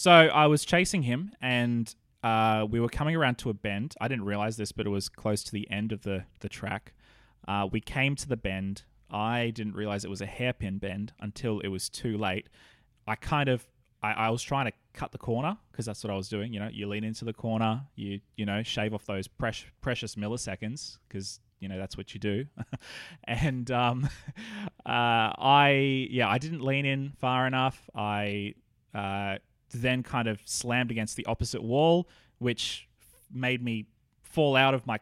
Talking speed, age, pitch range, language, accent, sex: 200 wpm, 20-39, 105-125 Hz, English, Australian, male